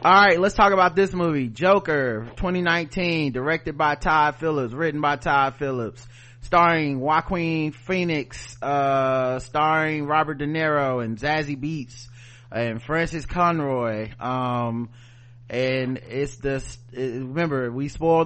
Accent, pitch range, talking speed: American, 120-155 Hz, 130 wpm